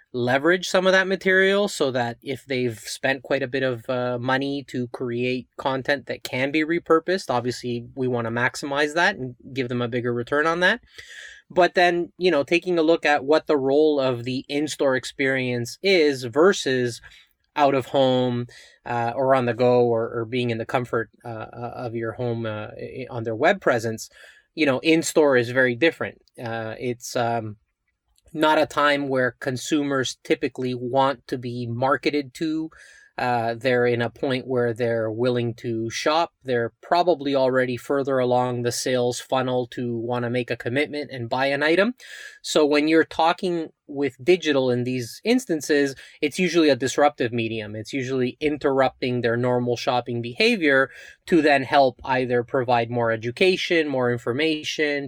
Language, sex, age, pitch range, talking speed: English, male, 20-39, 120-150 Hz, 170 wpm